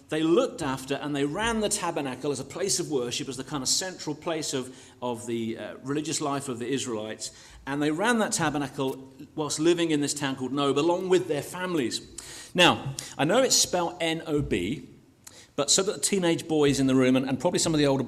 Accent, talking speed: British, 220 wpm